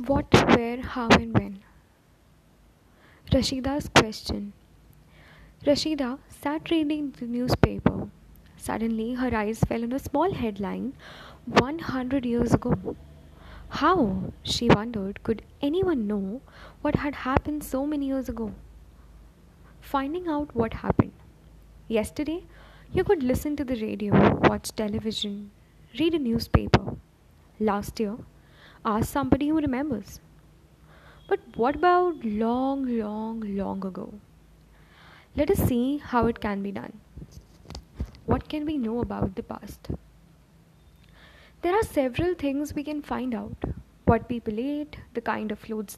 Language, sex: Hindi, female